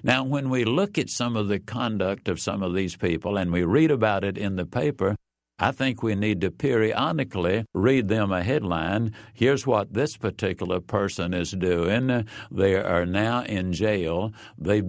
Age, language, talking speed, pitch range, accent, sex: 60-79, English, 180 wpm, 95-120 Hz, American, male